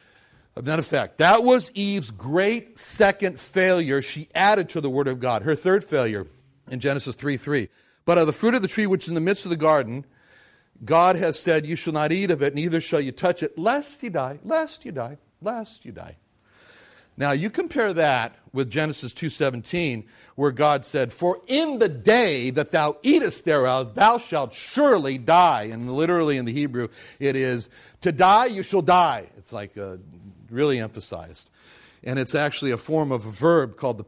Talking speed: 195 wpm